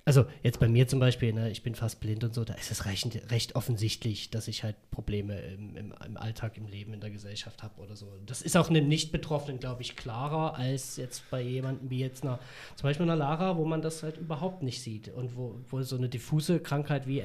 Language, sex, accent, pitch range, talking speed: German, male, German, 120-145 Hz, 235 wpm